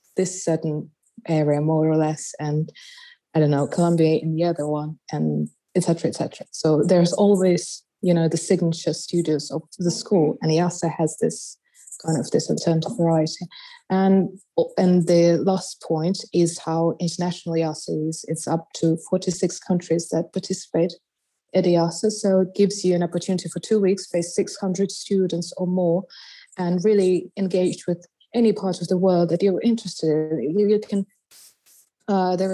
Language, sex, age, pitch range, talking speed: English, female, 20-39, 165-190 Hz, 165 wpm